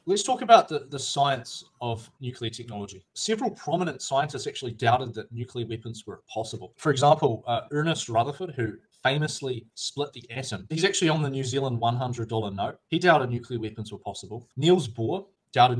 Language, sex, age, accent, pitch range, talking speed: English, male, 20-39, Australian, 115-145 Hz, 175 wpm